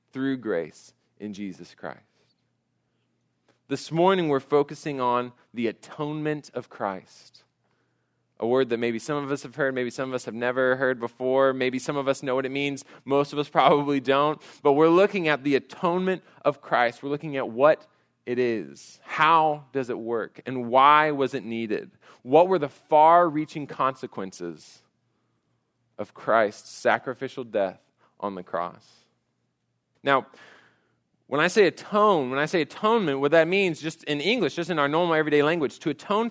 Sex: male